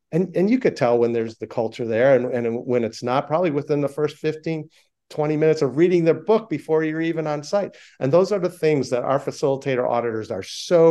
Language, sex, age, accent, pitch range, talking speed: English, male, 50-69, American, 120-165 Hz, 230 wpm